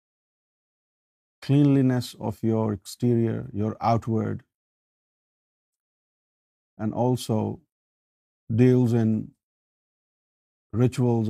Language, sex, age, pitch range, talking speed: Urdu, male, 50-69, 100-125 Hz, 60 wpm